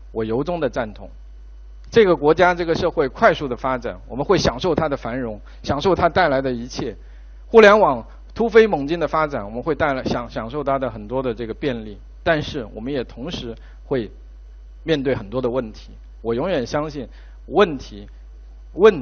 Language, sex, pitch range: Chinese, male, 110-155 Hz